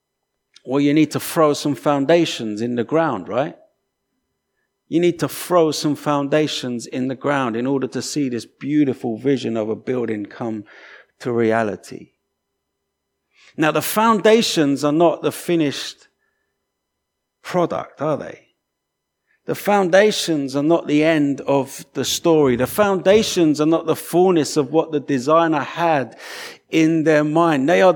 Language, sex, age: English, male, 50-69